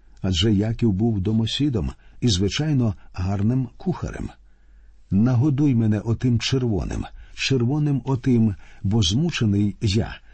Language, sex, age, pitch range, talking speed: Ukrainian, male, 50-69, 95-130 Hz, 100 wpm